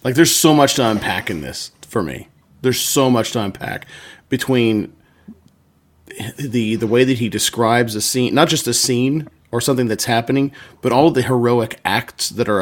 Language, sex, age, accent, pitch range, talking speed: English, male, 30-49, American, 105-130 Hz, 190 wpm